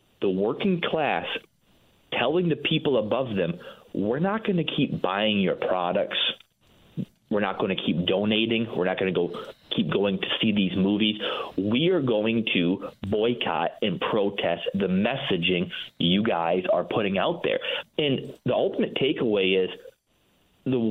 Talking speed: 155 wpm